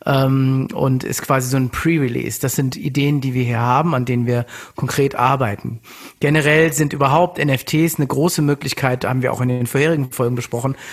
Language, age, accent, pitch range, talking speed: English, 50-69, German, 130-155 Hz, 180 wpm